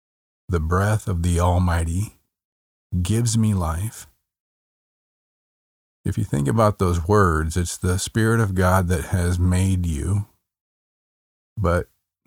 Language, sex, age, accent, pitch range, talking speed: English, male, 50-69, American, 80-100 Hz, 115 wpm